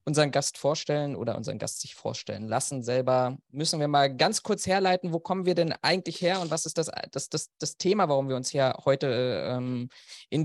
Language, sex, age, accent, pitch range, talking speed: German, male, 20-39, German, 125-155 Hz, 215 wpm